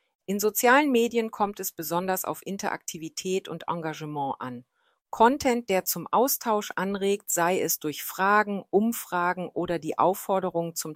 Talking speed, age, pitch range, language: 135 wpm, 40-59, 170-230 Hz, German